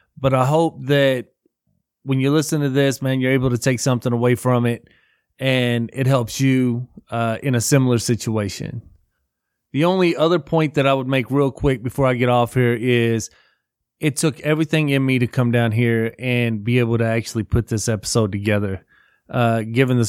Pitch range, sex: 115-140 Hz, male